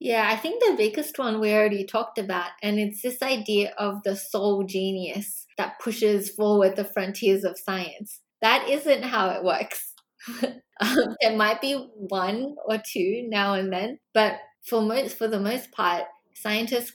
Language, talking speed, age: English, 170 wpm, 20-39